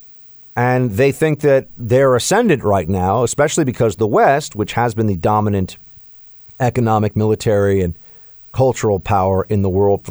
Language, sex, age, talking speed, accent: English, male, 40-59, 155 wpm, American